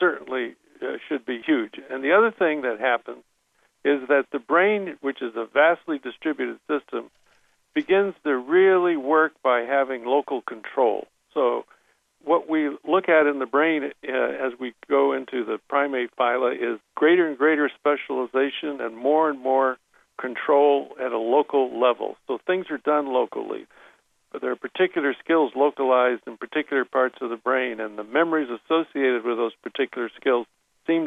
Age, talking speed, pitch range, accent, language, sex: 60-79, 160 wpm, 130-165 Hz, American, English, male